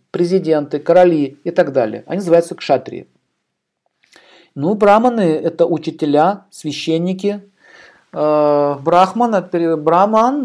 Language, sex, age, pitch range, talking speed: Russian, male, 50-69, 150-195 Hz, 90 wpm